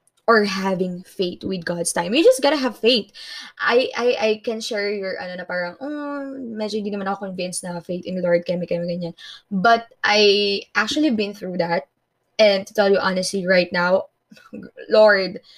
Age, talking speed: 20-39, 185 wpm